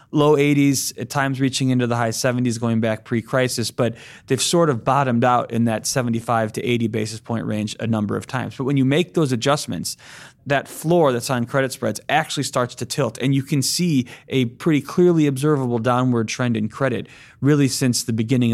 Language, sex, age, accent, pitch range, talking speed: English, male, 30-49, American, 115-140 Hz, 200 wpm